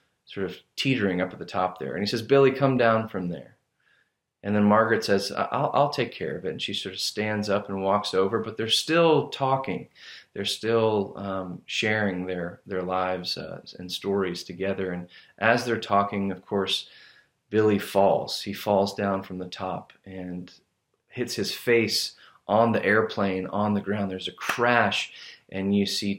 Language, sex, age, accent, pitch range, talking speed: English, male, 30-49, American, 95-115 Hz, 185 wpm